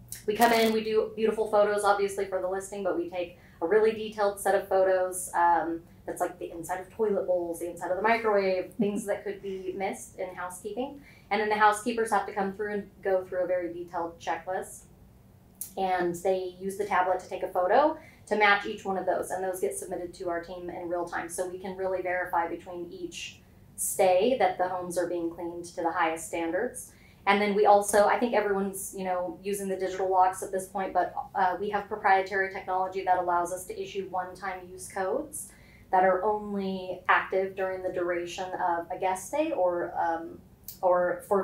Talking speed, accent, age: 205 wpm, American, 30-49